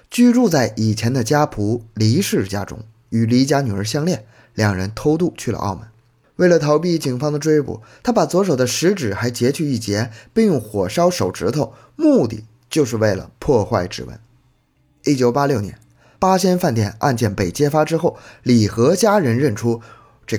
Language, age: Chinese, 20-39